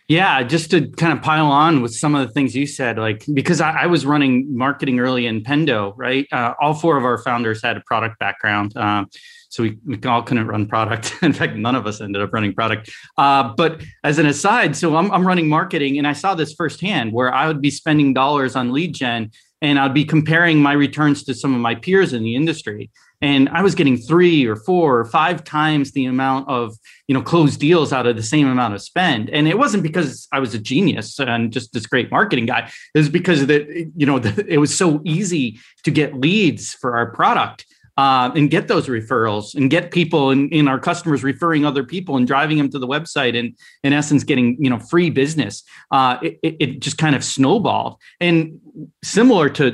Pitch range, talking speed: 120-155 Hz, 225 wpm